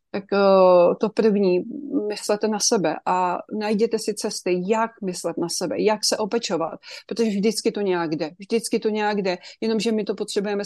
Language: Czech